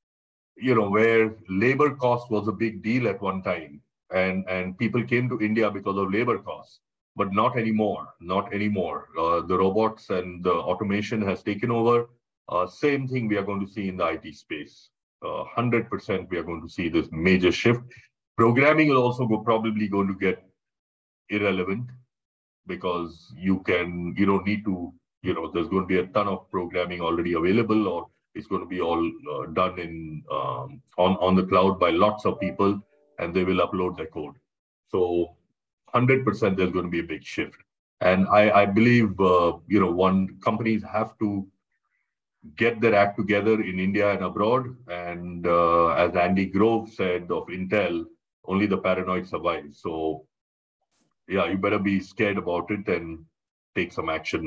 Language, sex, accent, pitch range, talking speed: English, male, Indian, 90-110 Hz, 175 wpm